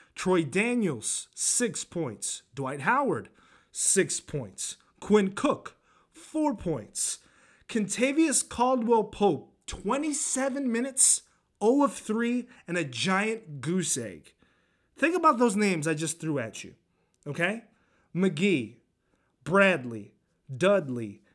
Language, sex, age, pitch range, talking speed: English, male, 30-49, 160-230 Hz, 105 wpm